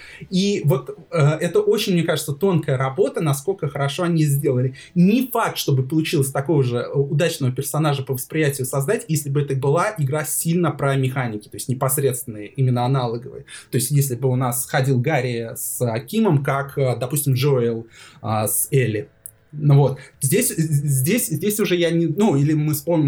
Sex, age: male, 20-39